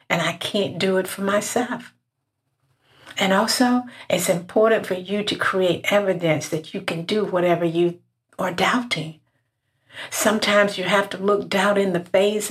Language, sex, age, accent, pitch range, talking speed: English, female, 60-79, American, 155-200 Hz, 160 wpm